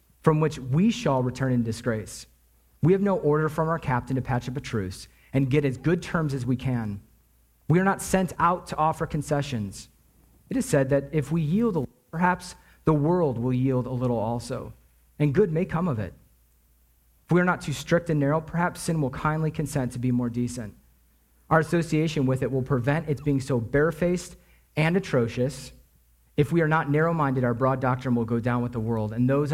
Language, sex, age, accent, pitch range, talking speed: English, male, 40-59, American, 120-155 Hz, 210 wpm